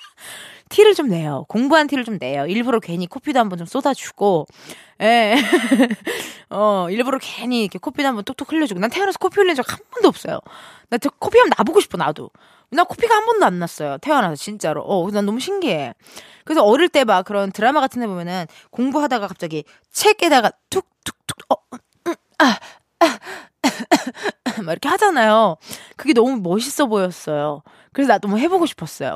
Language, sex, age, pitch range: Korean, female, 20-39, 200-315 Hz